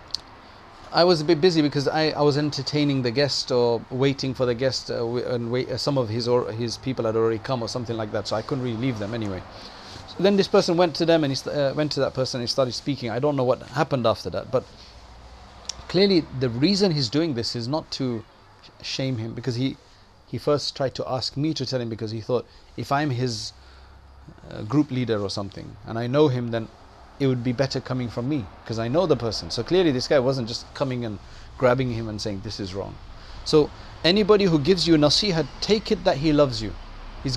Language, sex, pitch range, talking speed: English, male, 110-150 Hz, 225 wpm